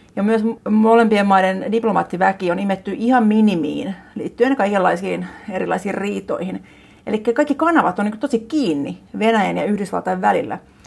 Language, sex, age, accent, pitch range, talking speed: Finnish, female, 30-49, native, 190-235 Hz, 135 wpm